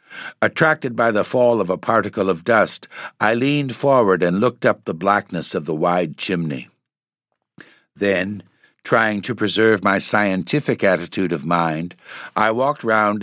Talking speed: 150 wpm